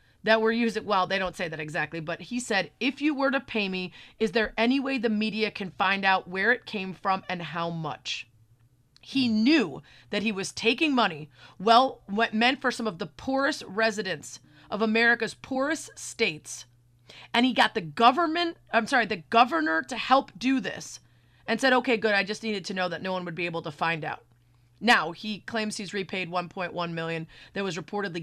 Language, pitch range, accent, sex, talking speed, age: English, 170-225 Hz, American, female, 195 wpm, 30-49